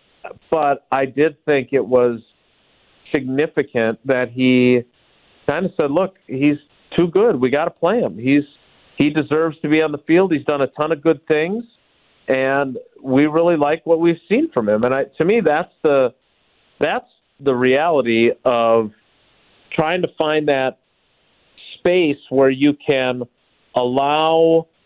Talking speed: 155 wpm